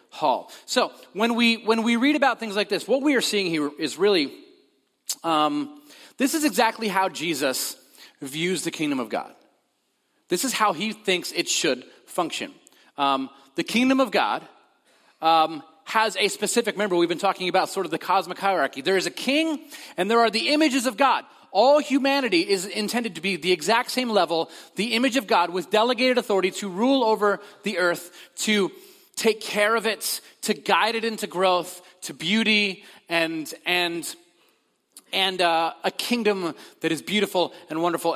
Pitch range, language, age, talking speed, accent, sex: 180-255 Hz, English, 30-49, 175 wpm, American, male